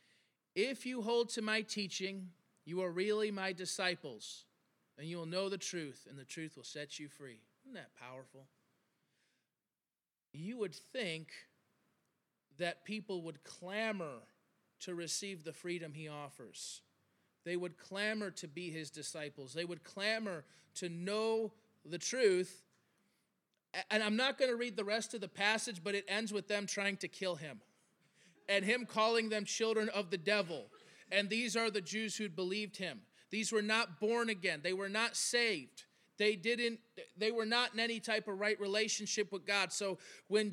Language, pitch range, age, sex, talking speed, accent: English, 175-220 Hz, 30-49, male, 170 wpm, American